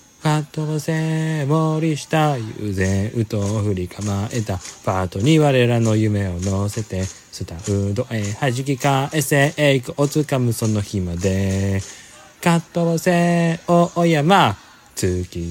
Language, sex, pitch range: Japanese, male, 110-160 Hz